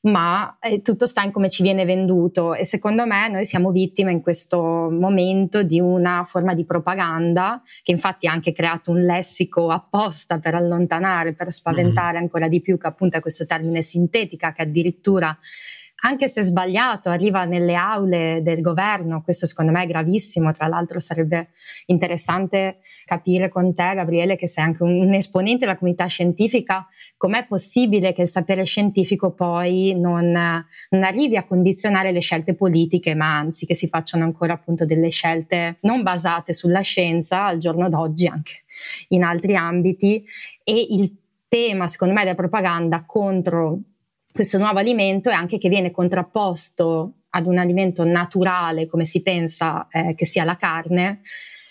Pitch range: 170-195 Hz